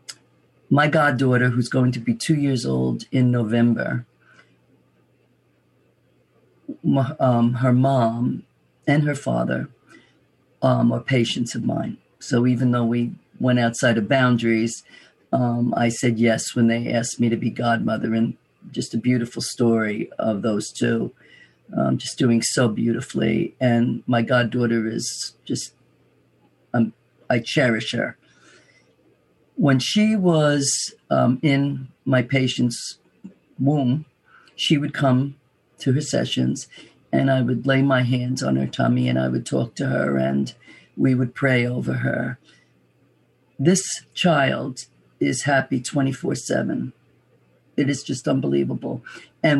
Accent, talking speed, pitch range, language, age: American, 130 wpm, 110-135 Hz, English, 40-59